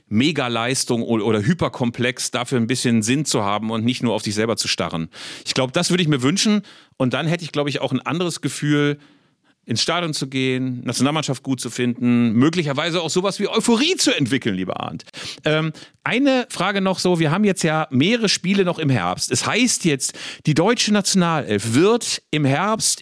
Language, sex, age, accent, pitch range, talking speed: German, male, 40-59, German, 125-170 Hz, 190 wpm